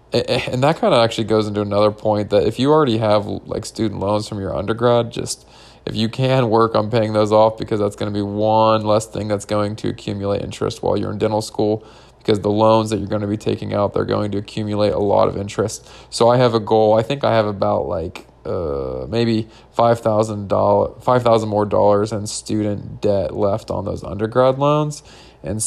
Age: 20-39